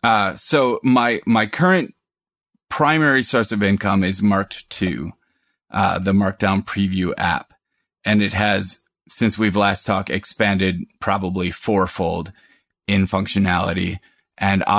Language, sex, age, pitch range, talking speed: English, male, 30-49, 95-115 Hz, 120 wpm